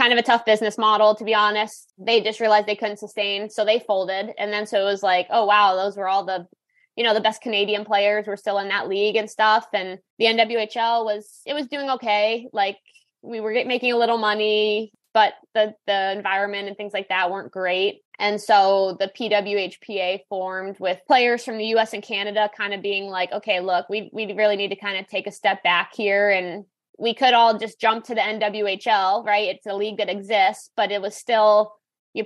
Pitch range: 195-220 Hz